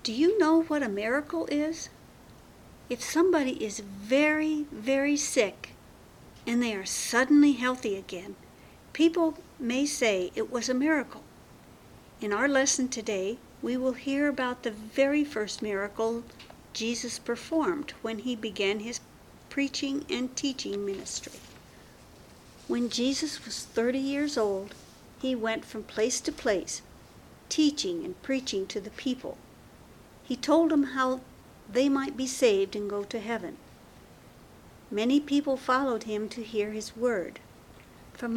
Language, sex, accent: English, female, American